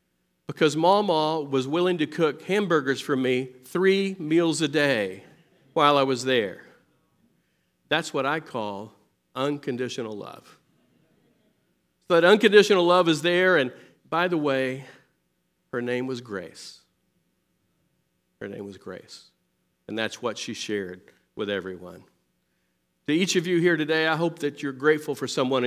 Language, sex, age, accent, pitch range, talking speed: English, male, 50-69, American, 120-160 Hz, 140 wpm